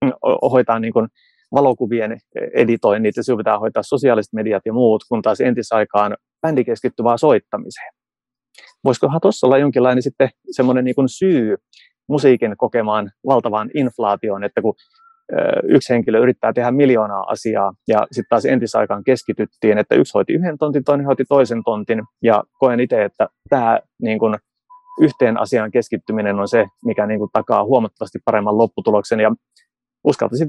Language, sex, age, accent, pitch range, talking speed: Finnish, male, 30-49, native, 110-135 Hz, 140 wpm